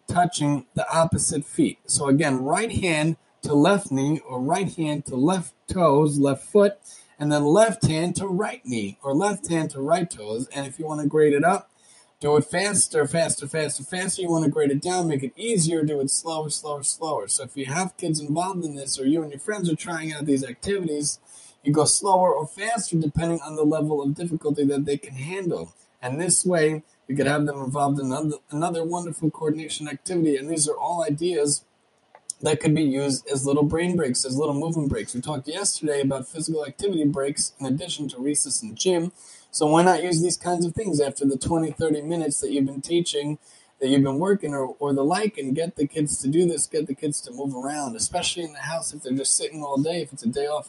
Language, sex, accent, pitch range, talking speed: English, male, American, 140-170 Hz, 225 wpm